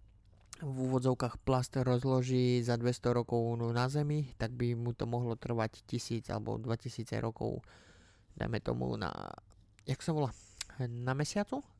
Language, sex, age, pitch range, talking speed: Slovak, male, 20-39, 115-140 Hz, 135 wpm